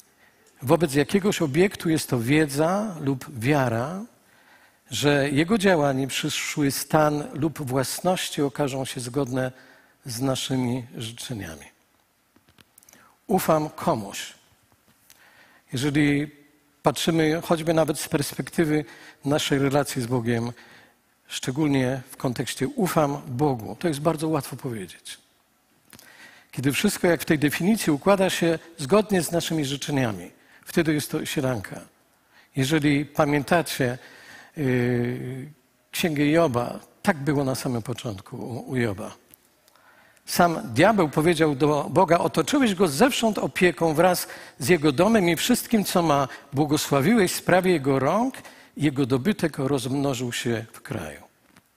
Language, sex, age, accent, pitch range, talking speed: Polish, male, 50-69, native, 130-170 Hz, 115 wpm